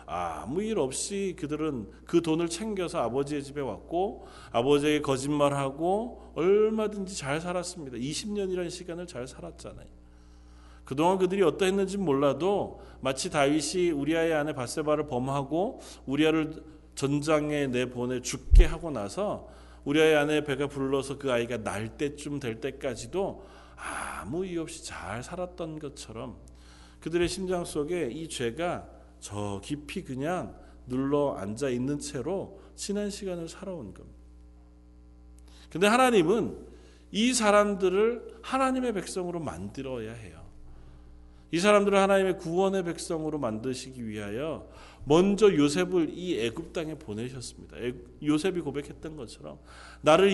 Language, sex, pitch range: Korean, male, 120-190 Hz